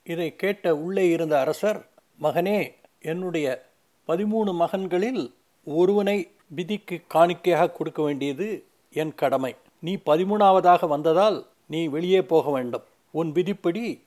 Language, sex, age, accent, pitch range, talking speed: Tamil, male, 60-79, native, 155-185 Hz, 110 wpm